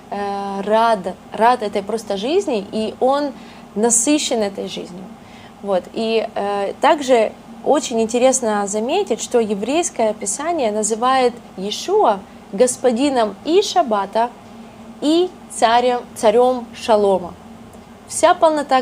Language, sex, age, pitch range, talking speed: Russian, female, 20-39, 210-255 Hz, 95 wpm